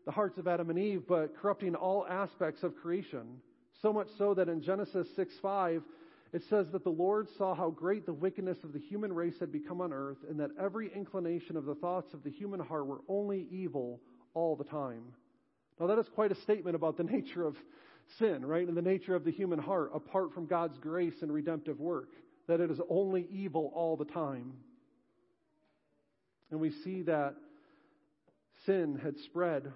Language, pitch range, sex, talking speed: English, 160-205 Hz, male, 190 wpm